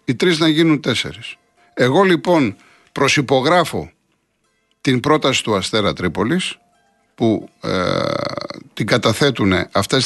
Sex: male